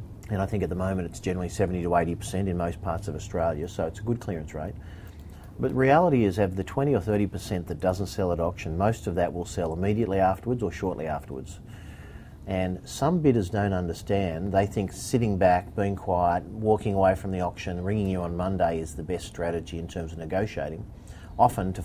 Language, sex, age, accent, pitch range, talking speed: English, male, 40-59, Australian, 85-105 Hz, 205 wpm